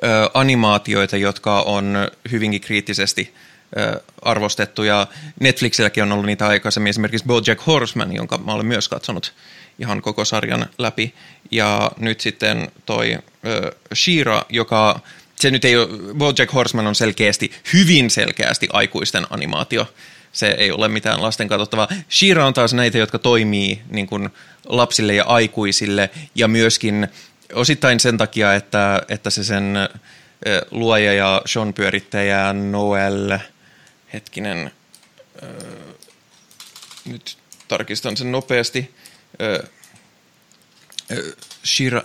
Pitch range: 105-120 Hz